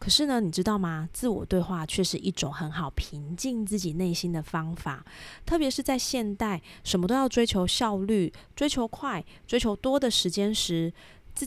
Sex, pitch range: female, 165-220 Hz